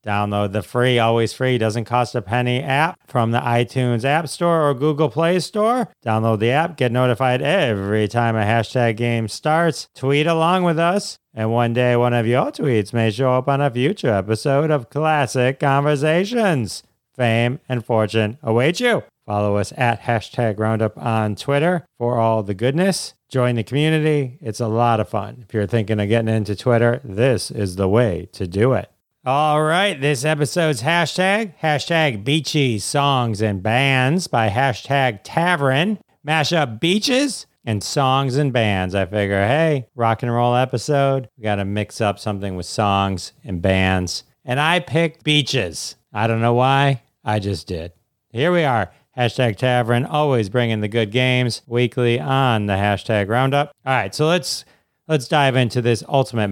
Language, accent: English, American